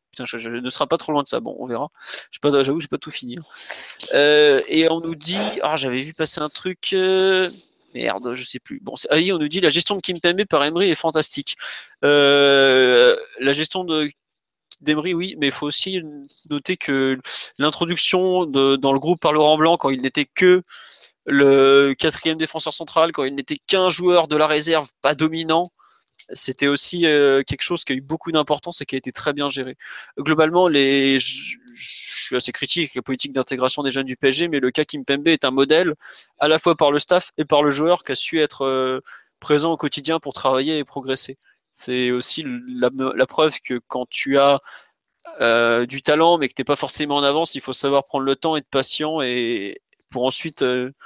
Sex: male